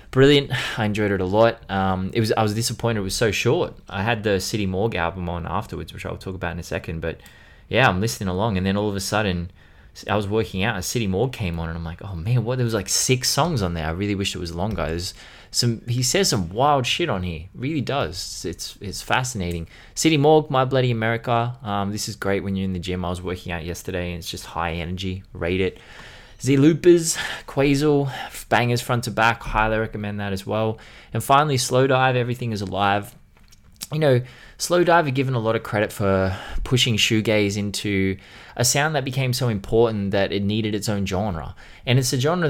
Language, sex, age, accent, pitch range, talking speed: English, male, 20-39, Australian, 95-120 Hz, 225 wpm